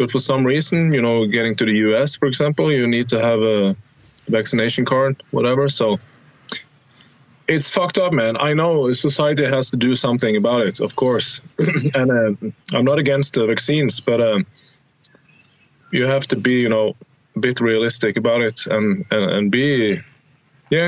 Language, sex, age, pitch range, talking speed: English, male, 20-39, 115-145 Hz, 175 wpm